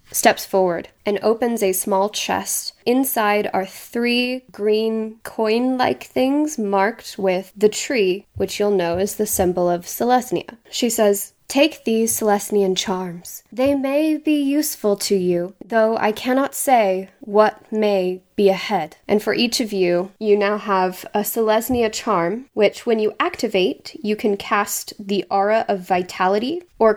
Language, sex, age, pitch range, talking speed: English, female, 10-29, 195-235 Hz, 150 wpm